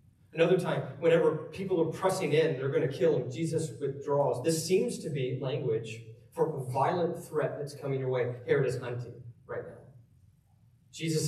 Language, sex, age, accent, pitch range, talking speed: English, male, 30-49, American, 120-155 Hz, 175 wpm